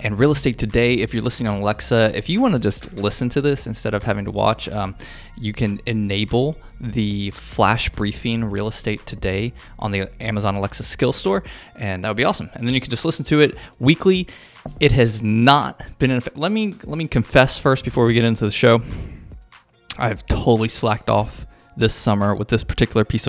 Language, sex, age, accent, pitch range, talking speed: English, male, 20-39, American, 105-130 Hz, 205 wpm